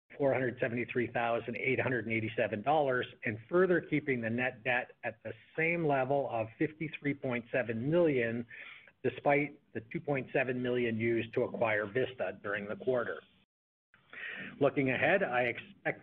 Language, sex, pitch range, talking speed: English, male, 120-150 Hz, 105 wpm